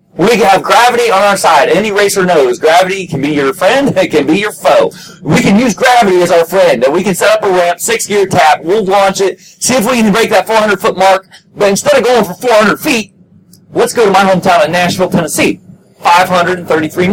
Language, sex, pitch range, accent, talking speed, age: English, male, 170-215 Hz, American, 215 wpm, 30-49